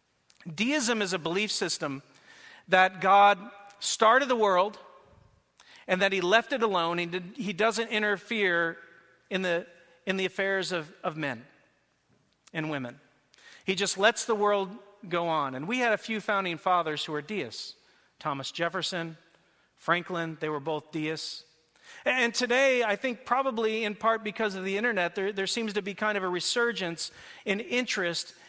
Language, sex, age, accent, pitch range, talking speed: English, male, 40-59, American, 155-205 Hz, 160 wpm